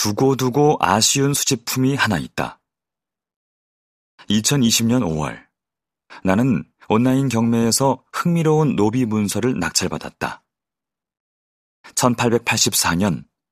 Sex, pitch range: male, 100-130 Hz